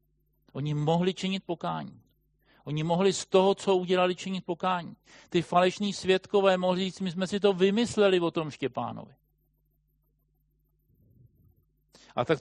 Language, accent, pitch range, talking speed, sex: Czech, native, 130-175 Hz, 130 wpm, male